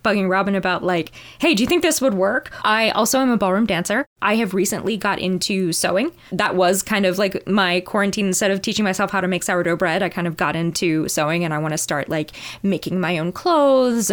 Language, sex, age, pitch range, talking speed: English, female, 20-39, 165-215 Hz, 235 wpm